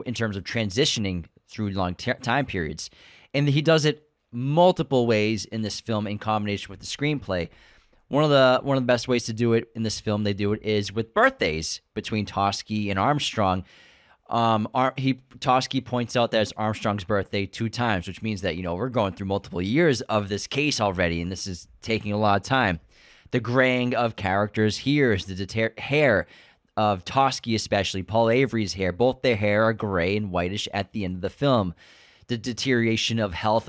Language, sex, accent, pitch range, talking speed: English, male, American, 100-125 Hz, 200 wpm